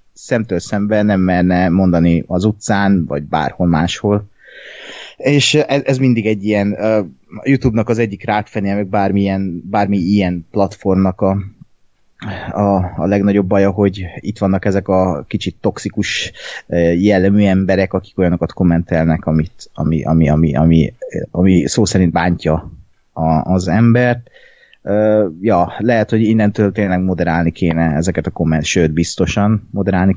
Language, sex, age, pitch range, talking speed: Hungarian, male, 30-49, 90-110 Hz, 135 wpm